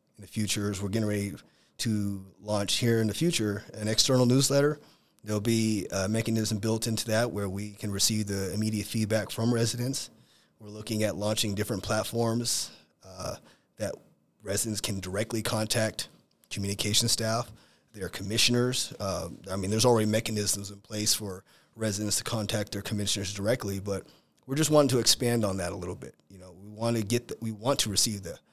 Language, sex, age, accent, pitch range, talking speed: English, male, 30-49, American, 105-115 Hz, 180 wpm